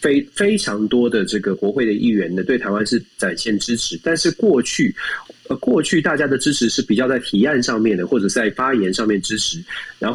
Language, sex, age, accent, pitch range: Chinese, male, 30-49, native, 115-180 Hz